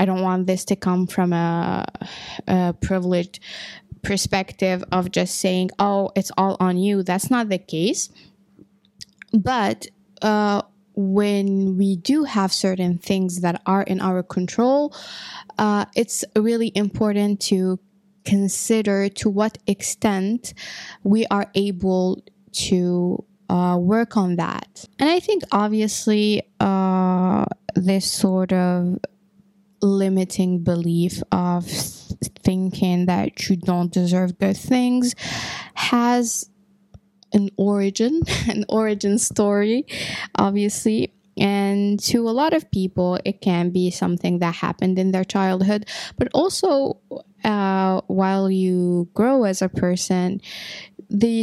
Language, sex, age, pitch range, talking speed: English, female, 10-29, 185-210 Hz, 120 wpm